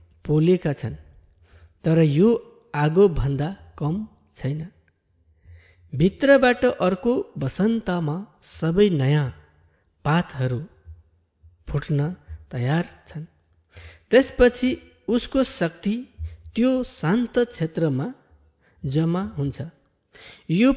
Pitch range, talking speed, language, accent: 135-205 Hz, 70 wpm, Malayalam, native